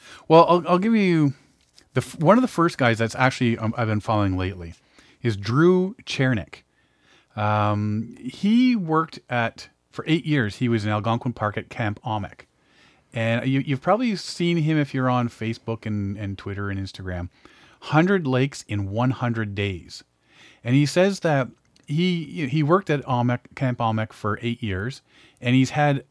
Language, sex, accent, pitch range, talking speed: English, male, American, 110-150 Hz, 170 wpm